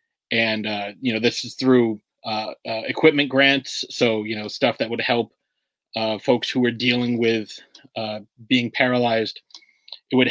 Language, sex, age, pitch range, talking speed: English, male, 30-49, 115-135 Hz, 170 wpm